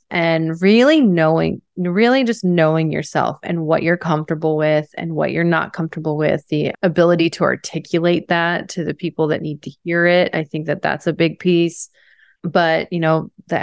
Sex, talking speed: female, 185 wpm